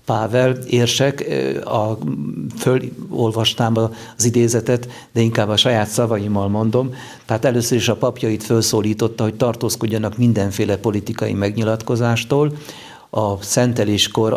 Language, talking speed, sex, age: Hungarian, 100 wpm, male, 50-69